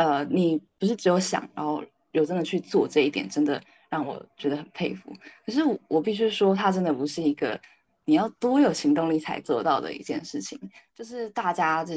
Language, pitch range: Chinese, 150-195 Hz